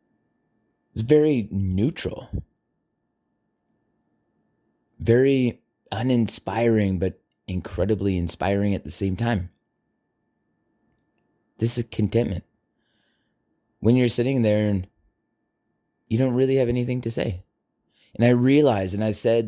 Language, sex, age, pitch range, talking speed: English, male, 20-39, 100-120 Hz, 100 wpm